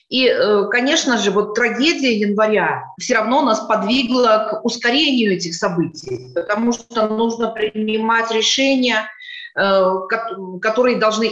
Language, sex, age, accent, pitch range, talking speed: Russian, female, 30-49, native, 200-245 Hz, 110 wpm